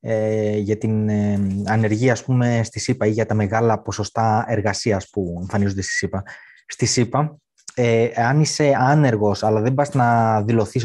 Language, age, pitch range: Greek, 20-39, 105-135 Hz